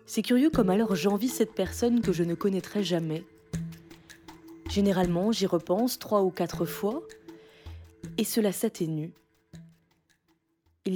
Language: French